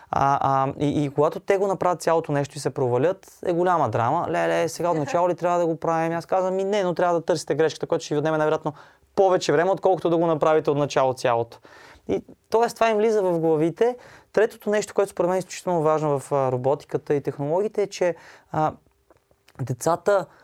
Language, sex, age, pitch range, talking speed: Bulgarian, male, 20-39, 145-185 Hz, 210 wpm